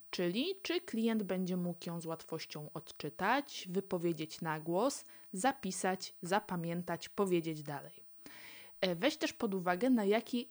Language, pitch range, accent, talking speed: Polish, 170-230 Hz, native, 125 wpm